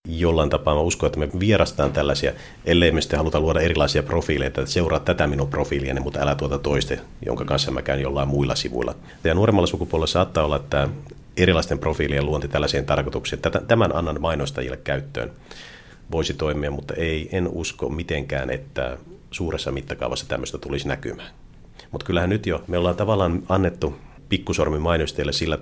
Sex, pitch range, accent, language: male, 70-85 Hz, native, Finnish